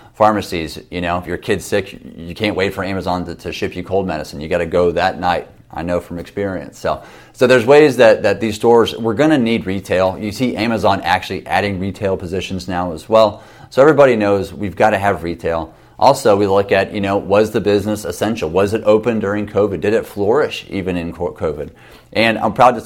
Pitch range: 90-110 Hz